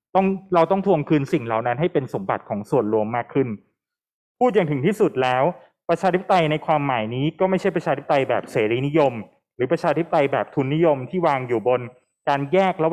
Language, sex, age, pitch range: Thai, male, 20-39, 125-175 Hz